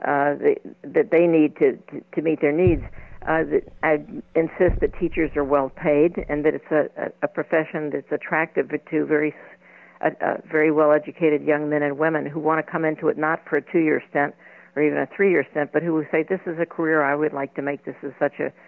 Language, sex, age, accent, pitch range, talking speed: English, female, 60-79, American, 145-165 Hz, 230 wpm